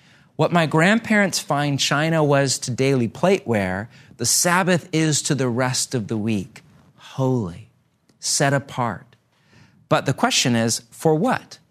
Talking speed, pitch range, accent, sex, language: 140 wpm, 125-165 Hz, American, male, English